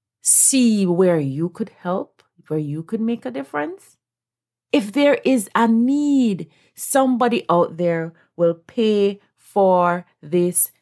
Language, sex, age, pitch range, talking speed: English, female, 30-49, 165-215 Hz, 130 wpm